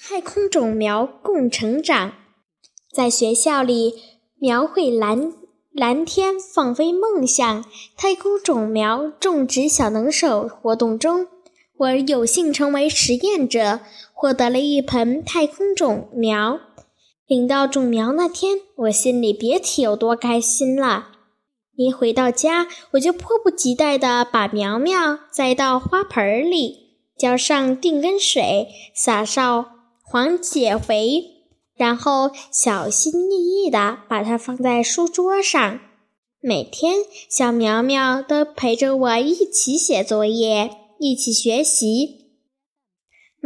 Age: 10-29